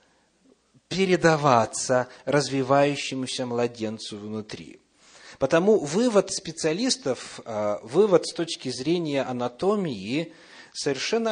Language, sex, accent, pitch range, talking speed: Russian, male, native, 115-165 Hz, 70 wpm